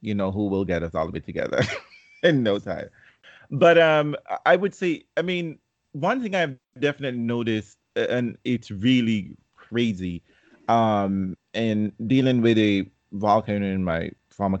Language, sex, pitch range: English, male, 95-125 Hz